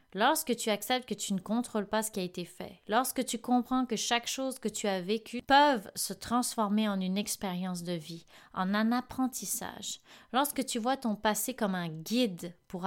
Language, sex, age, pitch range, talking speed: French, female, 30-49, 195-255 Hz, 200 wpm